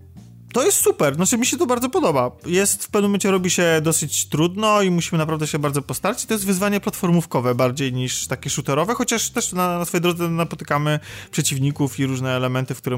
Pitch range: 135-170 Hz